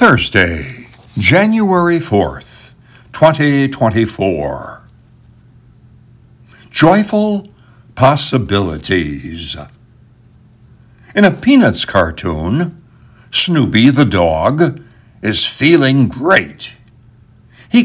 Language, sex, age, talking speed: English, male, 60-79, 55 wpm